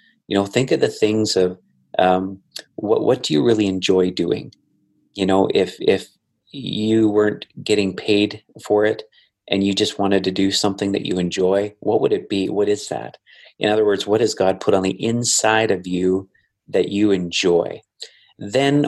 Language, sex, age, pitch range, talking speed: English, male, 30-49, 95-105 Hz, 185 wpm